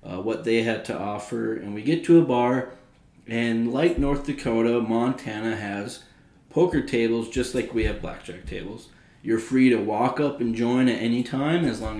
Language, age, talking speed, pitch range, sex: English, 20-39, 190 wpm, 110-125 Hz, male